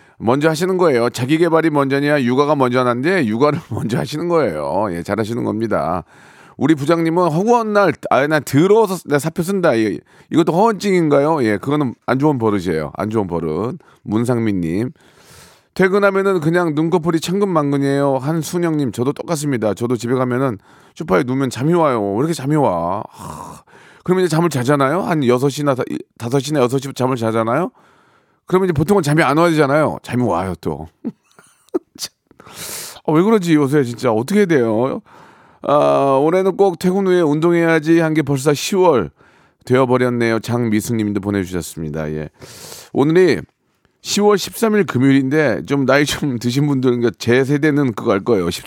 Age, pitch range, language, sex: 40-59, 120-165 Hz, Korean, male